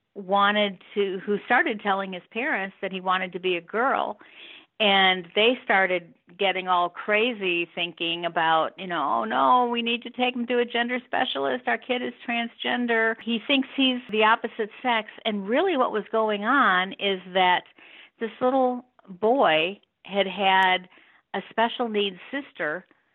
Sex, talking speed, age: female, 160 wpm, 50-69